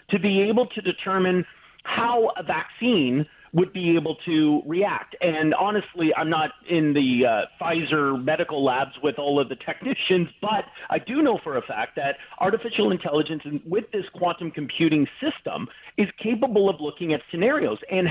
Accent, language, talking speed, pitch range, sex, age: American, English, 165 wpm, 160-215 Hz, male, 40-59